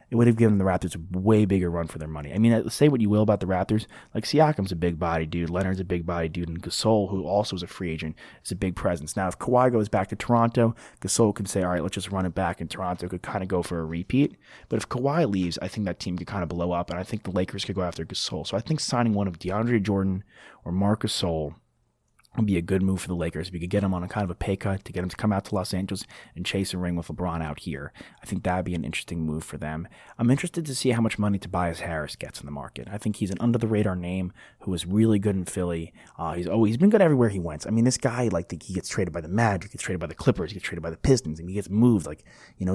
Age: 30-49